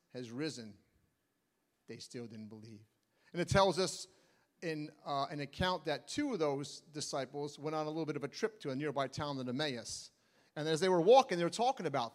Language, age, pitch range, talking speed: English, 40-59, 135-185 Hz, 205 wpm